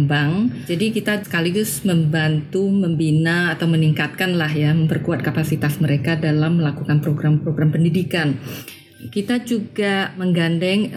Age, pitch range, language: 30-49, 160-200 Hz, Indonesian